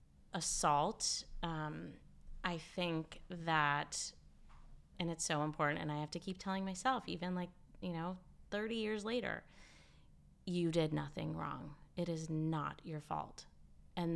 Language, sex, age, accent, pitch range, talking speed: English, female, 30-49, American, 150-180 Hz, 140 wpm